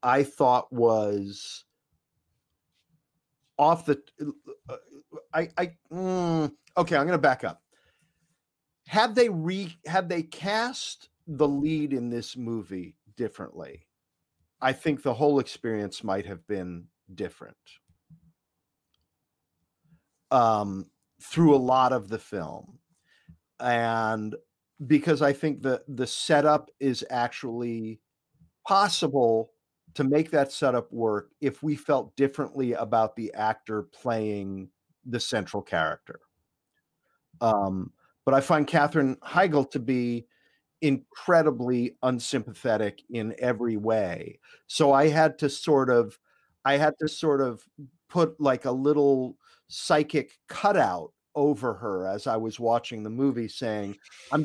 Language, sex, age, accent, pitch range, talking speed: English, male, 40-59, American, 115-155 Hz, 120 wpm